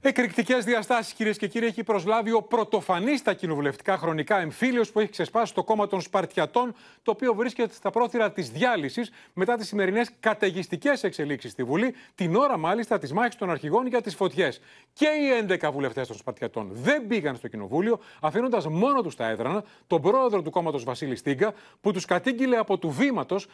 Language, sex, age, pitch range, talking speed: Greek, male, 30-49, 175-235 Hz, 180 wpm